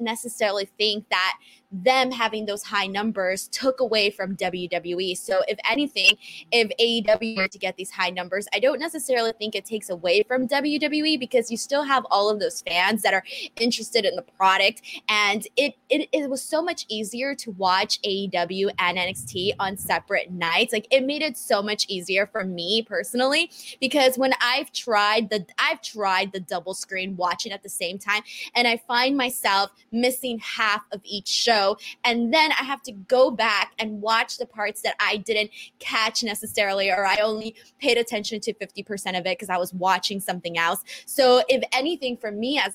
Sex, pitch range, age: female, 195-250 Hz, 20-39